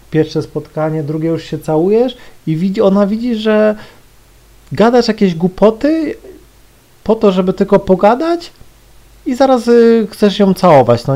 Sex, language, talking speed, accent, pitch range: male, Polish, 140 wpm, native, 130-195 Hz